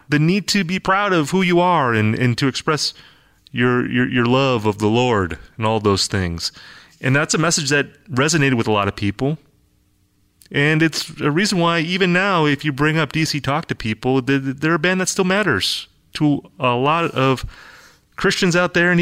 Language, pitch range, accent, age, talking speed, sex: English, 115-150 Hz, American, 30-49, 200 wpm, male